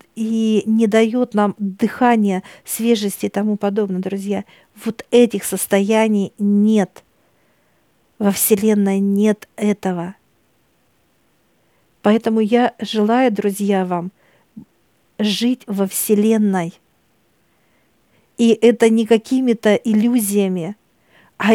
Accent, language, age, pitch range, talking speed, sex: native, Russian, 50-69, 205-230 Hz, 90 wpm, female